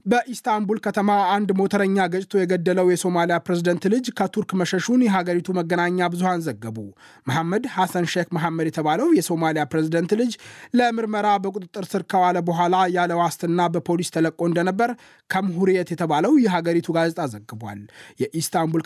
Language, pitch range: Amharic, 160-195 Hz